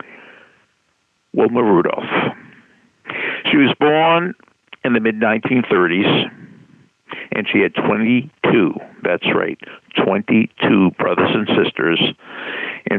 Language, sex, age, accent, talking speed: English, male, 60-79, American, 90 wpm